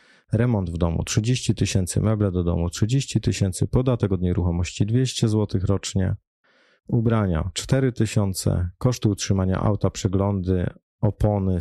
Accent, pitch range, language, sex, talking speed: native, 90-115 Hz, Polish, male, 125 wpm